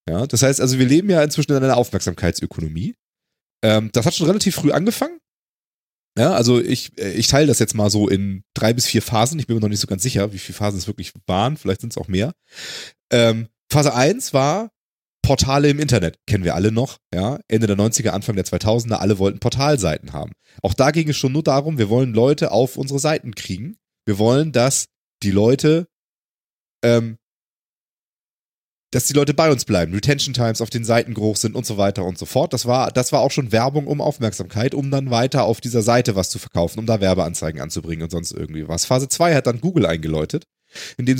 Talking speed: 210 wpm